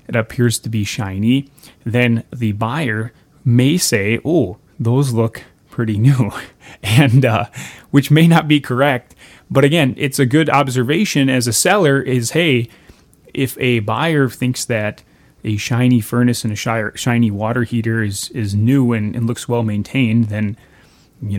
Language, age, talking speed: English, 30-49, 160 wpm